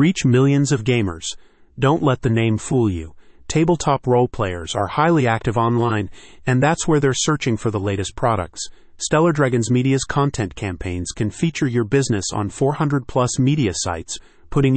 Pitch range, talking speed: 110-140 Hz, 165 wpm